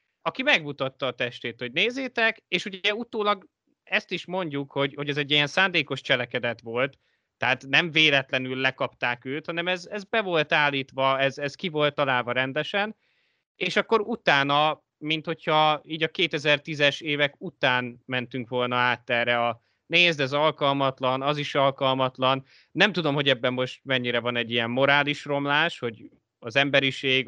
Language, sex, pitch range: Hungarian, male, 125-160 Hz